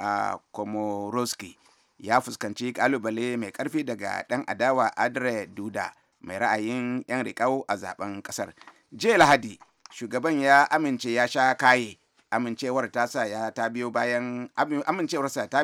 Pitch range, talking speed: 110-125 Hz, 130 wpm